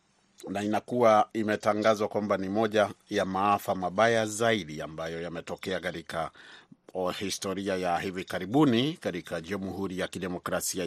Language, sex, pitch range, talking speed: Swahili, male, 90-105 Hz, 120 wpm